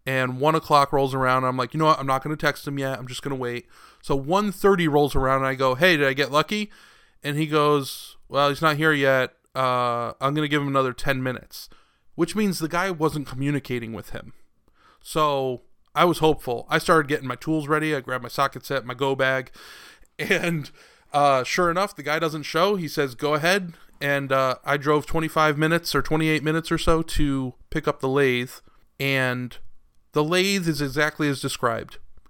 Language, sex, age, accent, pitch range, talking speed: English, male, 20-39, American, 135-165 Hz, 210 wpm